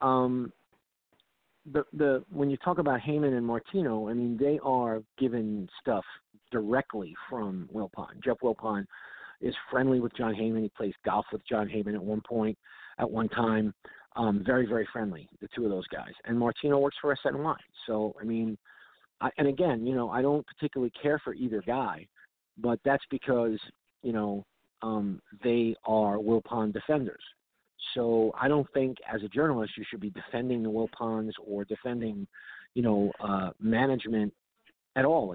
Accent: American